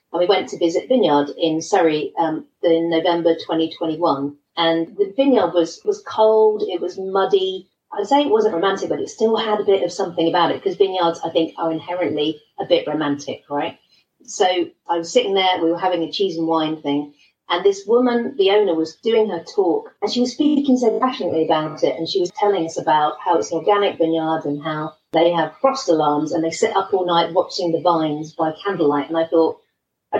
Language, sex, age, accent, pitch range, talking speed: English, female, 40-59, British, 160-215 Hz, 215 wpm